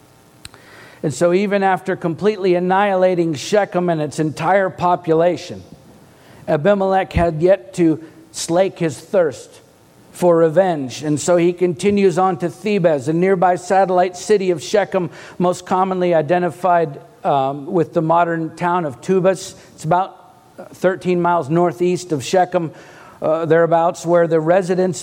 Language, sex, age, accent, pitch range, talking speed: English, male, 50-69, American, 170-195 Hz, 130 wpm